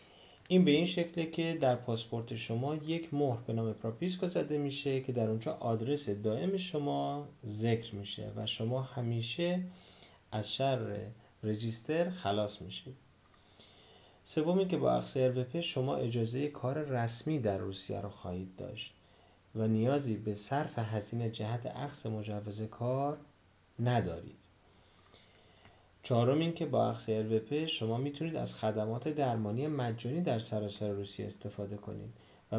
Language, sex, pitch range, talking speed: Persian, male, 105-140 Hz, 135 wpm